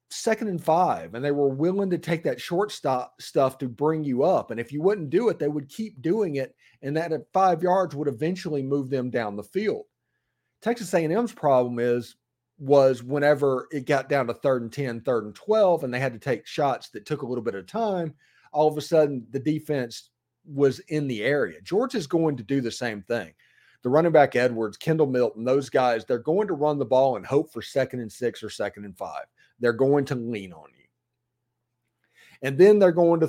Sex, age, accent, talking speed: male, 40-59, American, 220 wpm